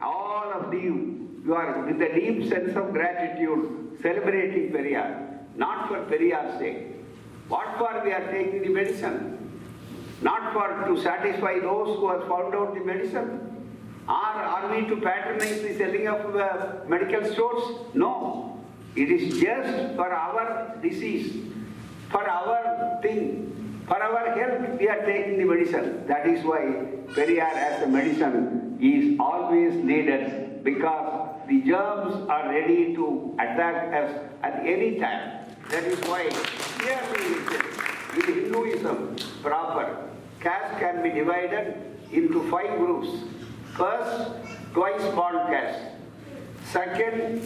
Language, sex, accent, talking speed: Tamil, male, native, 135 wpm